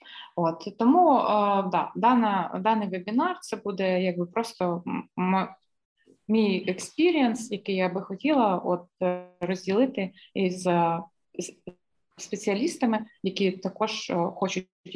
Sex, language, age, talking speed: female, Ukrainian, 20-39, 105 wpm